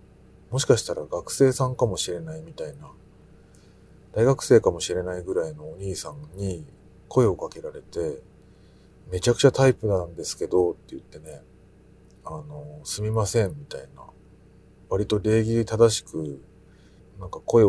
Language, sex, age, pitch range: Japanese, male, 40-59, 95-135 Hz